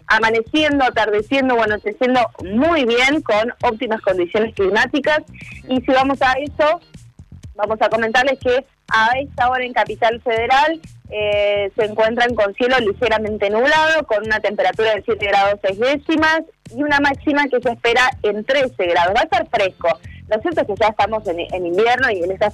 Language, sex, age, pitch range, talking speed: Spanish, female, 20-39, 210-270 Hz, 170 wpm